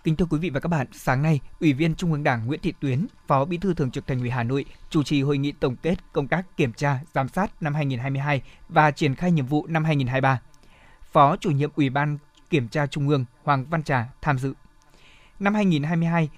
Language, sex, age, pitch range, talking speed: Vietnamese, male, 20-39, 140-170 Hz, 230 wpm